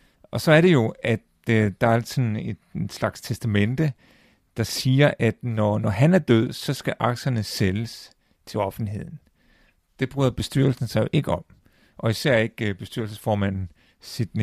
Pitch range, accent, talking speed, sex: 105-125 Hz, native, 160 wpm, male